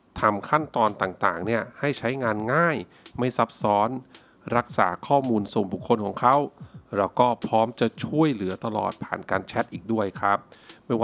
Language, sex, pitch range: Thai, male, 105-140 Hz